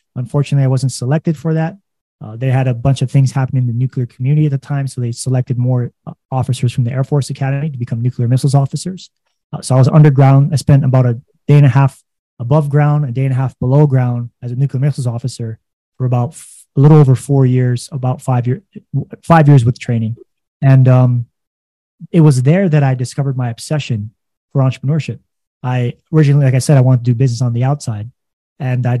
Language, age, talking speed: English, 20-39, 220 wpm